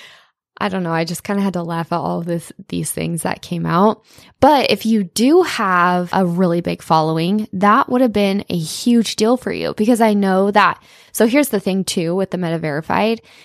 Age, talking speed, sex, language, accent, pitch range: 20-39, 220 wpm, female, English, American, 170-205 Hz